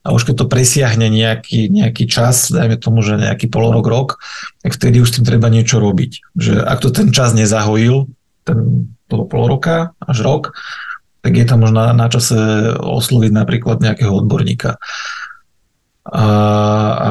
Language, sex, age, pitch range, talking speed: Slovak, male, 40-59, 110-130 Hz, 160 wpm